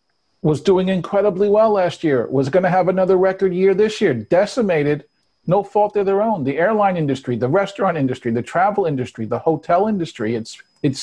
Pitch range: 130-175 Hz